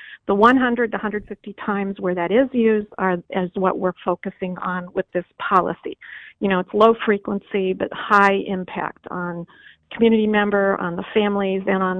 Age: 50-69